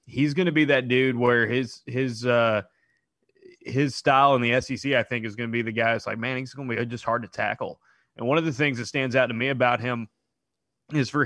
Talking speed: 255 wpm